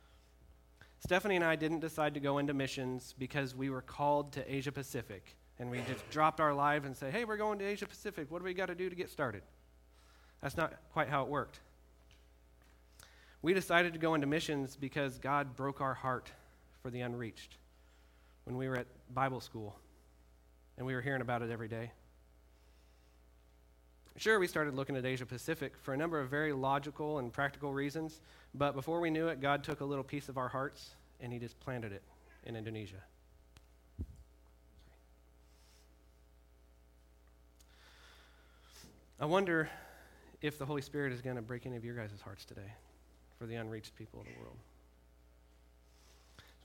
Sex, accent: male, American